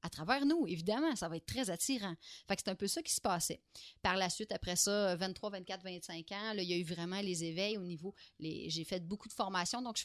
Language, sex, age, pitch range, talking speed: French, female, 30-49, 180-235 Hz, 265 wpm